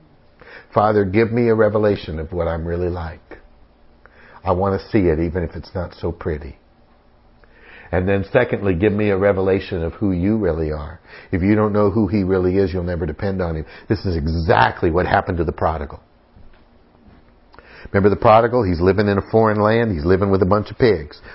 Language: English